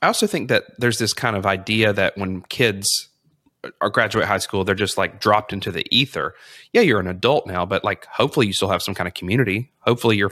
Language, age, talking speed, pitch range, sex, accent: English, 30-49, 235 wpm, 95-115 Hz, male, American